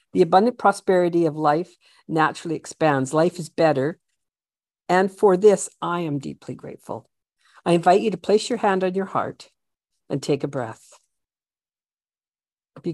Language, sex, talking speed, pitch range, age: English, female, 150 wpm, 155-210 Hz, 50-69